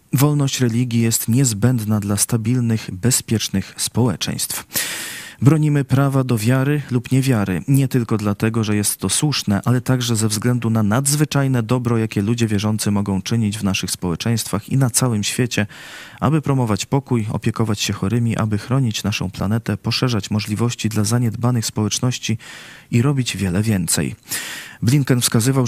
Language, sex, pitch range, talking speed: Polish, male, 110-125 Hz, 145 wpm